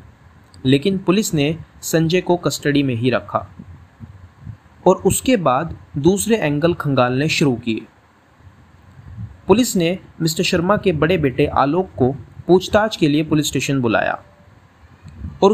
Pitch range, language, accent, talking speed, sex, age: 115-195 Hz, Hindi, native, 125 wpm, male, 30-49